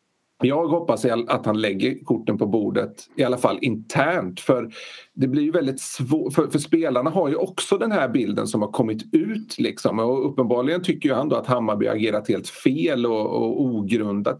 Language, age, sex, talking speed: Swedish, 40-59, male, 190 wpm